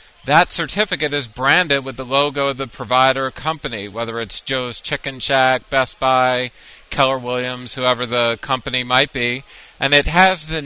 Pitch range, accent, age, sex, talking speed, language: 125-145 Hz, American, 40-59, male, 165 wpm, English